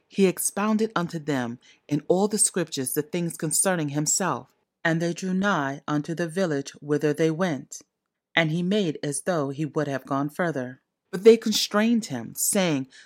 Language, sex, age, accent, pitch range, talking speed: English, female, 30-49, American, 150-195 Hz, 170 wpm